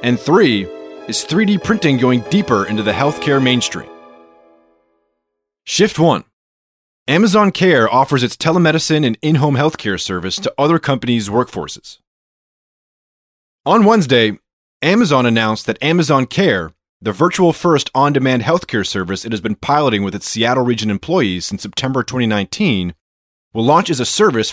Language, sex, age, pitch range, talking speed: English, male, 30-49, 105-155 Hz, 140 wpm